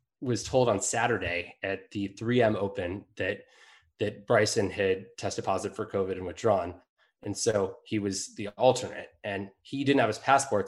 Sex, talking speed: male, 170 wpm